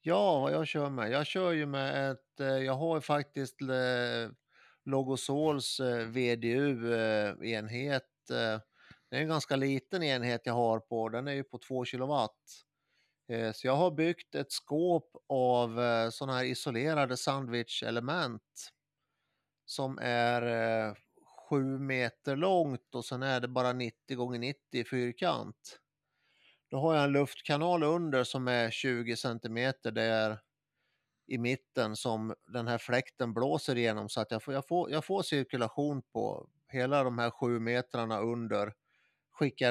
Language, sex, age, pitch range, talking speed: Swedish, male, 30-49, 115-140 Hz, 140 wpm